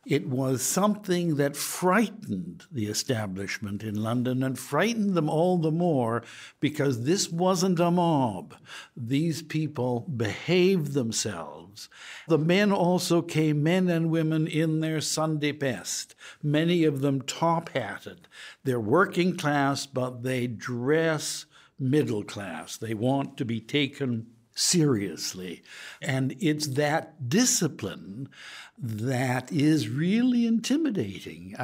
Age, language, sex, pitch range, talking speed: 60-79, English, male, 125-170 Hz, 115 wpm